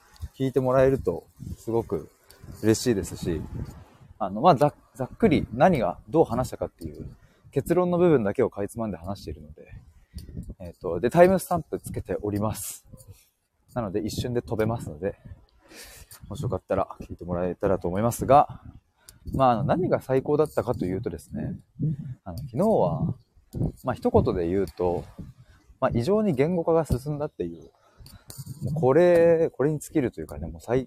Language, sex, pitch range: Japanese, male, 100-140 Hz